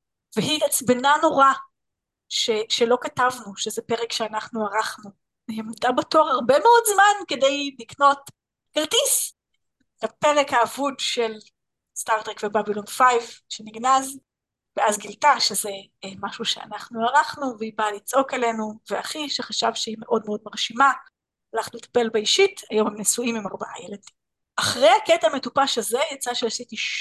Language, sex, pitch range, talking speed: Hebrew, female, 225-280 Hz, 125 wpm